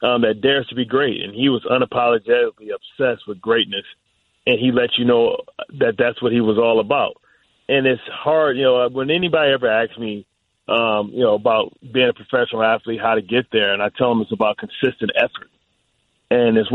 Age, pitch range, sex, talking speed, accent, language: 30-49, 115-140 Hz, male, 205 wpm, American, English